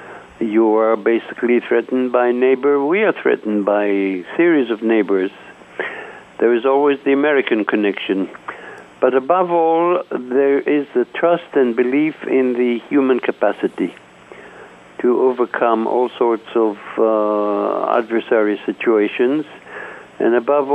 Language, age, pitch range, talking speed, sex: English, 60-79, 110-140 Hz, 125 wpm, male